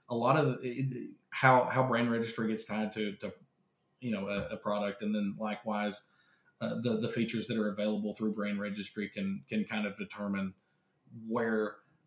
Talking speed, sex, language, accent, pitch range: 175 wpm, male, English, American, 105-130 Hz